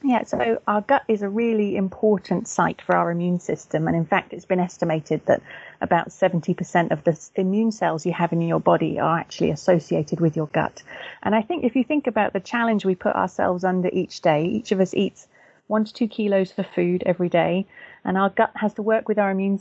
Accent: British